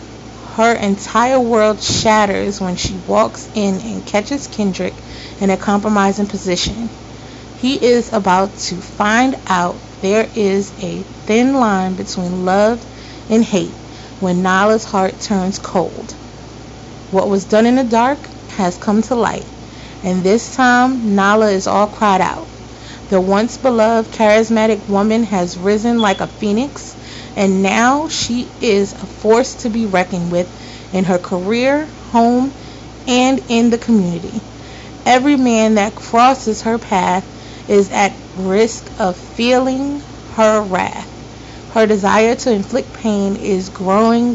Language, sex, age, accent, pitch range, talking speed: English, female, 30-49, American, 190-230 Hz, 135 wpm